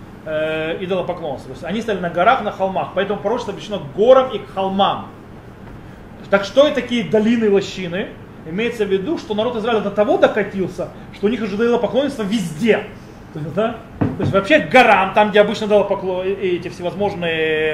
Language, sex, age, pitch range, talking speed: Russian, male, 30-49, 175-220 Hz, 175 wpm